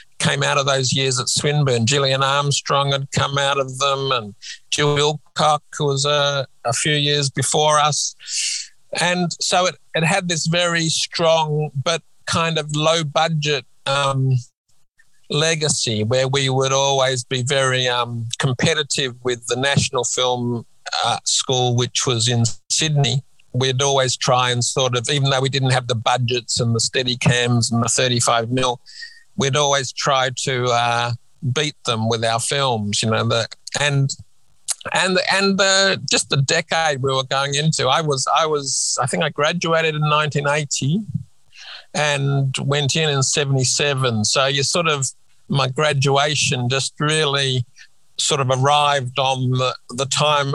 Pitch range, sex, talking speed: 125-150 Hz, male, 160 wpm